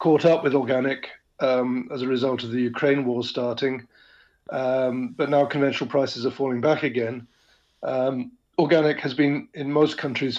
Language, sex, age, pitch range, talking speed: English, male, 50-69, 130-150 Hz, 170 wpm